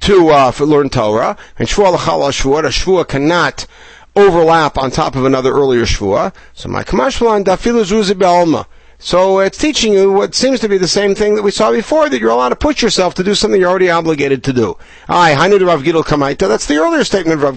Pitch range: 145-215 Hz